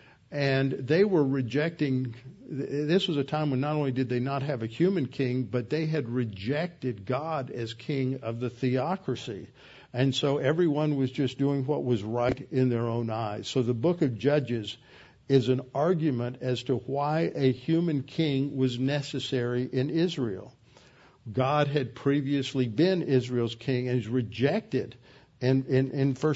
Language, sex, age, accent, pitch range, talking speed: English, male, 60-79, American, 125-145 Hz, 160 wpm